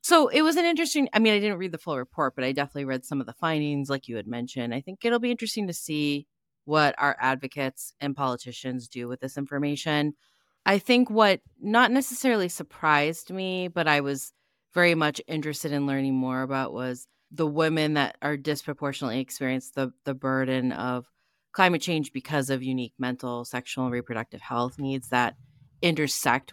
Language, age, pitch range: English, 30-49, 130-180 Hz